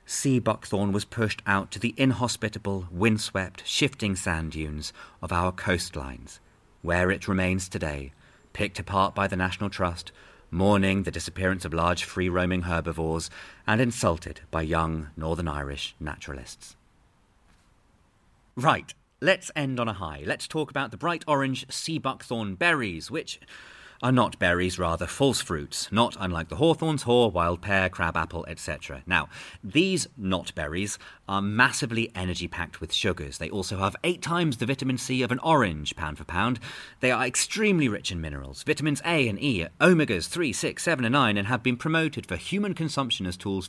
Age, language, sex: 40-59, English, male